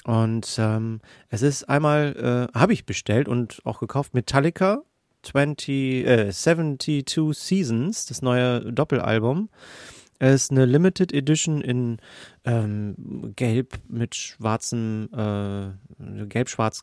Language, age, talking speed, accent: German, 30-49, 105 wpm, German